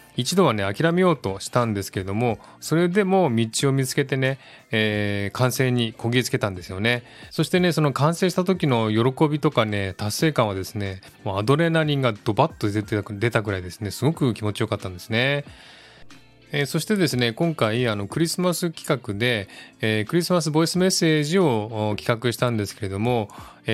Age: 20-39